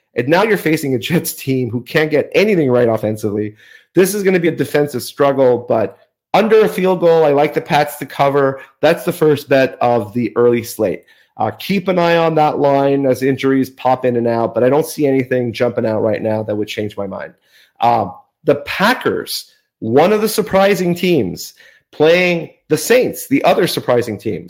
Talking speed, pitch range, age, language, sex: 200 wpm, 125-165 Hz, 30-49, English, male